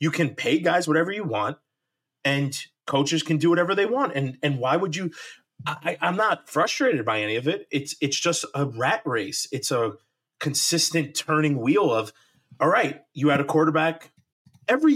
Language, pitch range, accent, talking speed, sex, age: English, 140-180 Hz, American, 185 wpm, male, 30-49